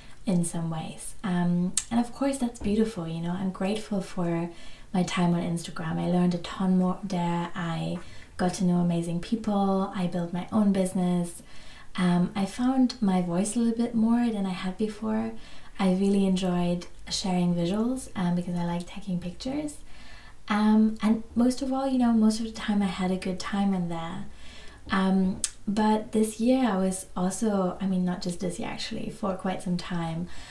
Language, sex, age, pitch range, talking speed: English, female, 20-39, 175-205 Hz, 185 wpm